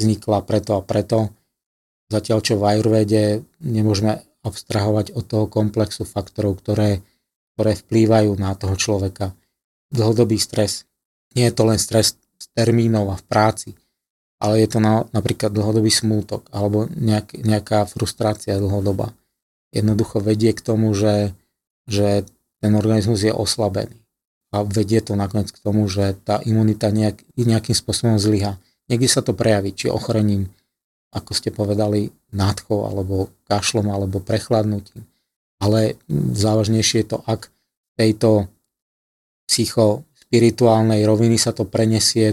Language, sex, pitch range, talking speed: Slovak, male, 105-115 Hz, 130 wpm